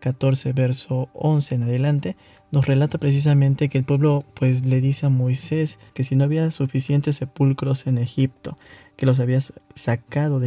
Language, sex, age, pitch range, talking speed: Spanish, male, 20-39, 130-150 Hz, 165 wpm